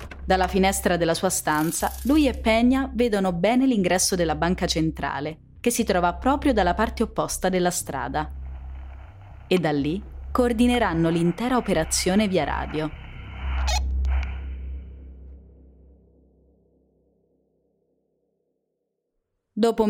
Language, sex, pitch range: Italian, female, 120-195 Hz